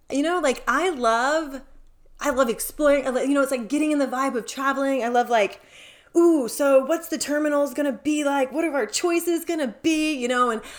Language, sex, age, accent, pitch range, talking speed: English, female, 20-39, American, 215-310 Hz, 210 wpm